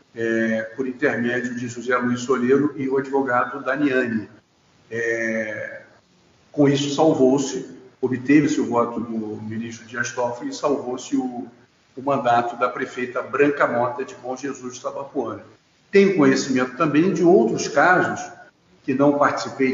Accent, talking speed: Brazilian, 135 wpm